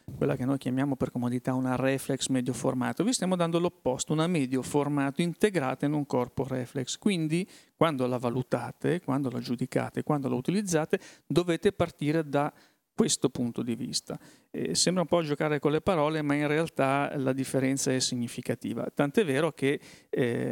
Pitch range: 125-150 Hz